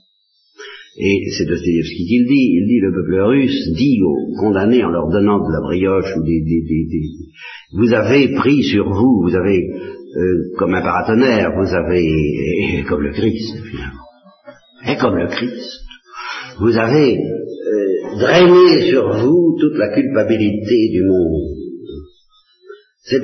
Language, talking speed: French, 150 wpm